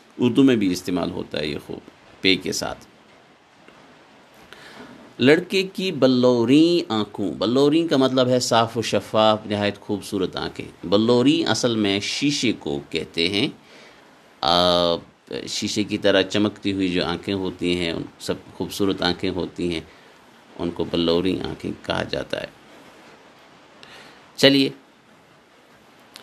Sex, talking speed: male, 125 wpm